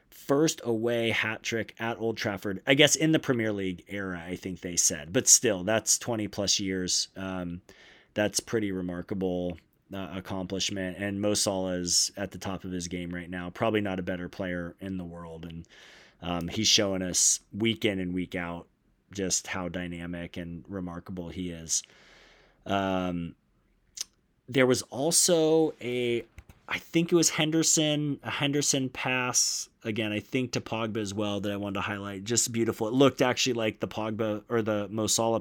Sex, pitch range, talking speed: male, 90-115 Hz, 175 wpm